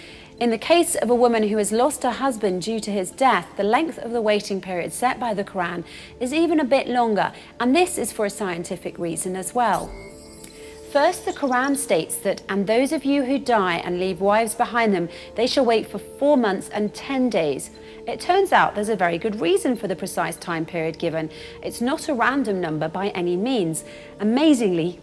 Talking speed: 210 wpm